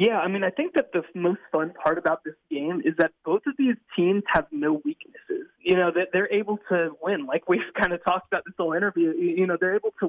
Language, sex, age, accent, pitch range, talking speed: English, male, 20-39, American, 160-220 Hz, 255 wpm